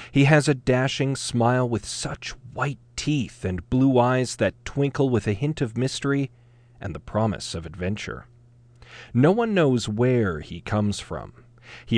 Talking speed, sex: 160 wpm, male